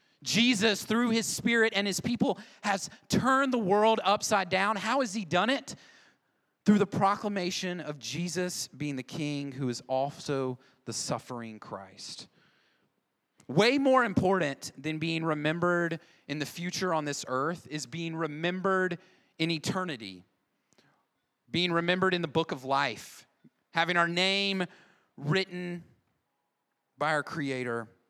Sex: male